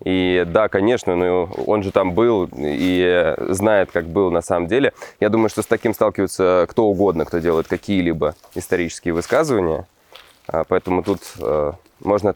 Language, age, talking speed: Russian, 20-39, 150 wpm